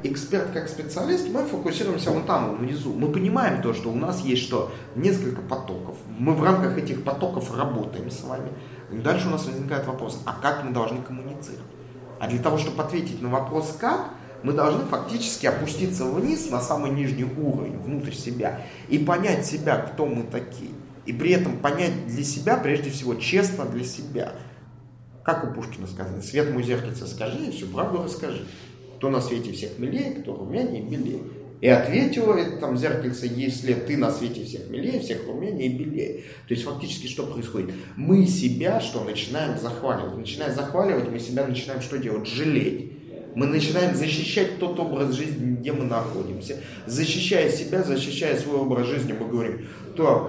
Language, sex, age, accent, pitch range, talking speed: Russian, male, 30-49, native, 120-155 Hz, 170 wpm